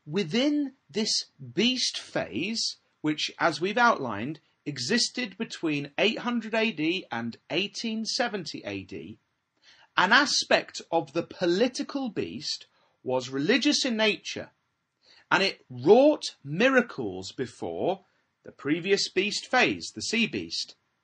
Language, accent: English, British